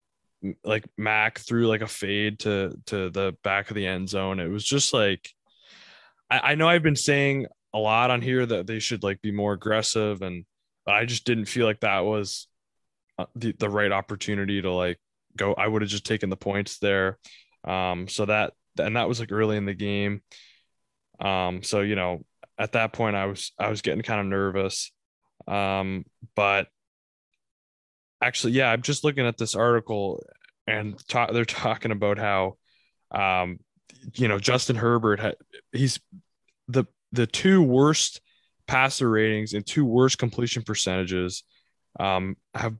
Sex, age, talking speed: male, 20-39, 170 wpm